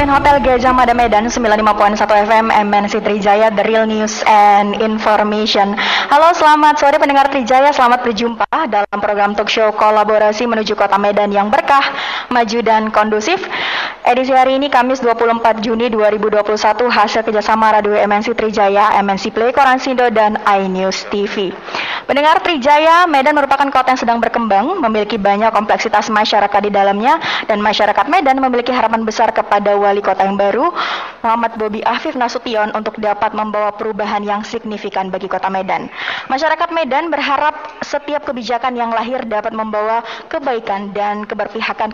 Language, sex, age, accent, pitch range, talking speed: Indonesian, female, 20-39, native, 210-255 Hz, 145 wpm